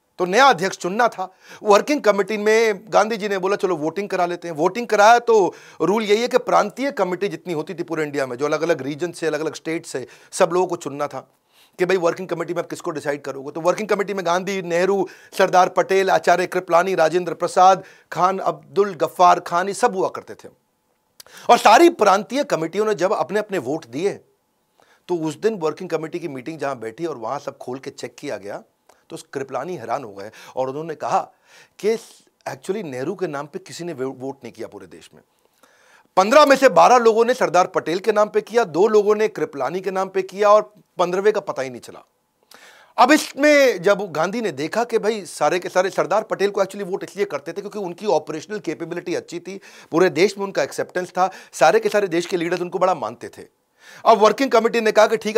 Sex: male